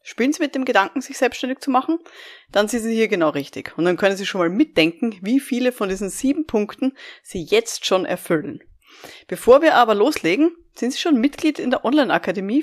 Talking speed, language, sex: 205 wpm, German, female